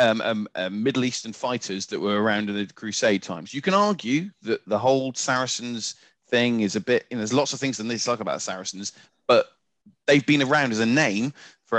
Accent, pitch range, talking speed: British, 105-140 Hz, 215 wpm